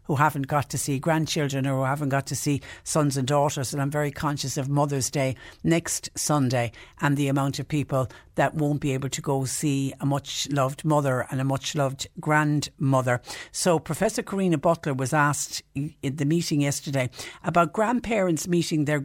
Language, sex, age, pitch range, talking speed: English, female, 60-79, 140-165 Hz, 185 wpm